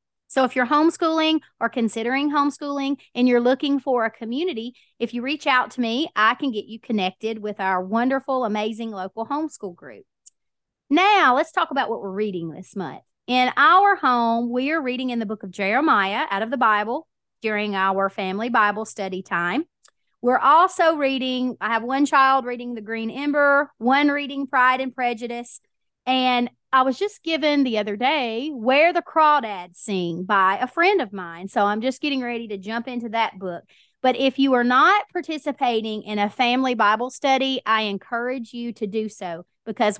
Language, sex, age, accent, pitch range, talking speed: English, female, 30-49, American, 210-270 Hz, 185 wpm